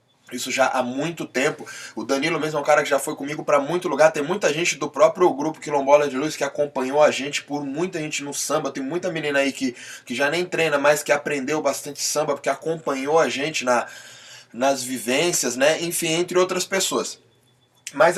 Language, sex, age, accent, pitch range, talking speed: Portuguese, male, 20-39, Brazilian, 130-170 Hz, 210 wpm